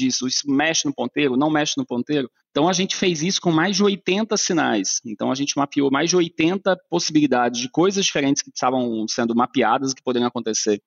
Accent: Brazilian